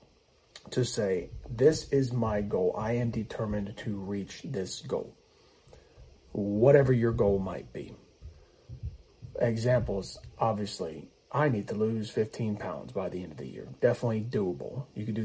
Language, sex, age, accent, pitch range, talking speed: English, male, 40-59, American, 105-125 Hz, 145 wpm